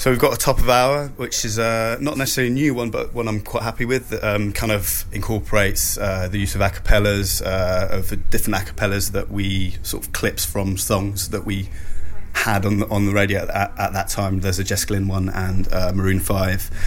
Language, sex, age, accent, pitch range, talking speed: English, male, 20-39, British, 95-105 Hz, 230 wpm